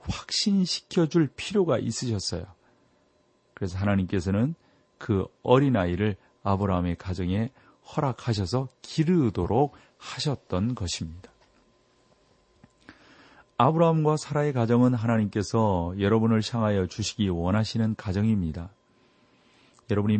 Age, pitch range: 40-59, 95-120 Hz